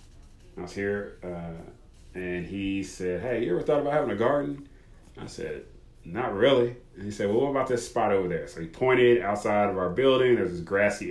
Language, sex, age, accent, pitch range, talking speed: English, male, 30-49, American, 90-115 Hz, 210 wpm